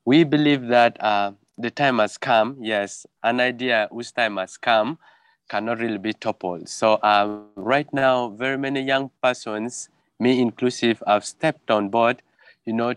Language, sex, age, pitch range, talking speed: English, male, 20-39, 110-135 Hz, 160 wpm